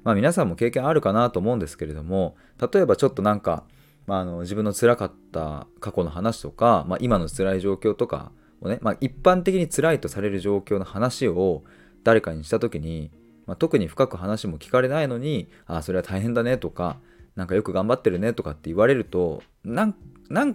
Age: 20-39